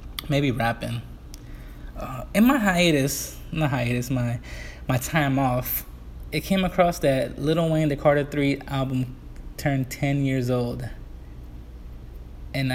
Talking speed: 125 wpm